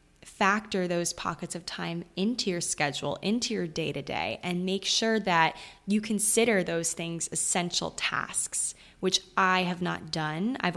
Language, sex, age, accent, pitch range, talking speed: English, female, 20-39, American, 165-200 Hz, 150 wpm